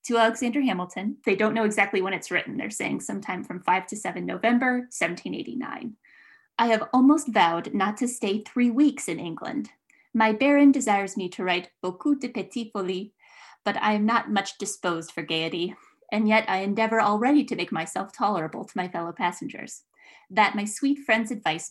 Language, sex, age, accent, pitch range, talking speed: English, female, 20-39, American, 190-265 Hz, 180 wpm